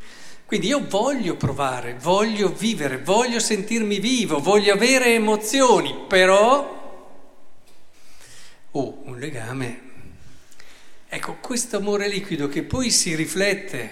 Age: 50-69